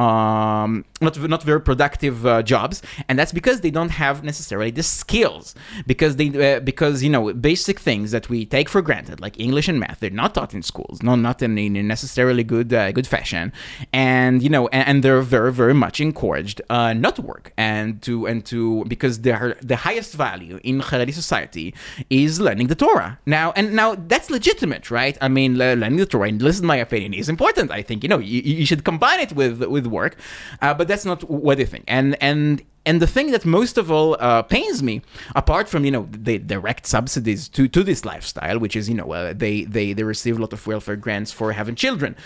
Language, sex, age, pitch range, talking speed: English, male, 20-39, 115-160 Hz, 220 wpm